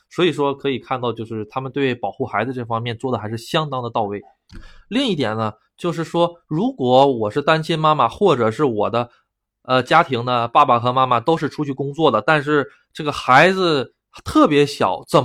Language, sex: Chinese, male